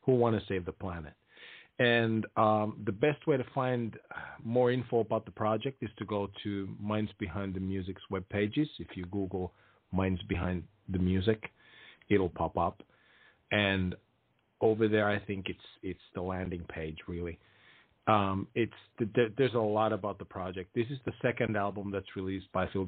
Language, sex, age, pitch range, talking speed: English, male, 40-59, 95-115 Hz, 180 wpm